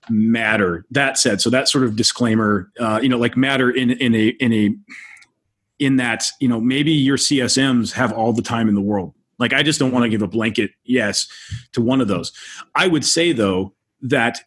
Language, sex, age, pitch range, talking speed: English, male, 30-49, 105-130 Hz, 210 wpm